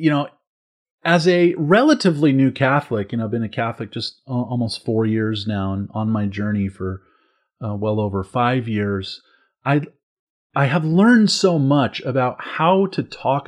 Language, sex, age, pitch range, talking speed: English, male, 30-49, 115-150 Hz, 170 wpm